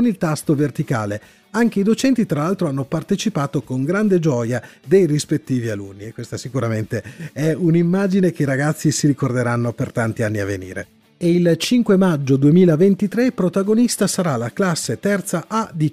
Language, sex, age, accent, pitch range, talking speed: Italian, male, 40-59, native, 135-195 Hz, 160 wpm